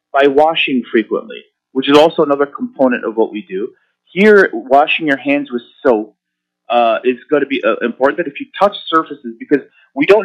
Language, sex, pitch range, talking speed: Arabic, male, 125-180 Hz, 185 wpm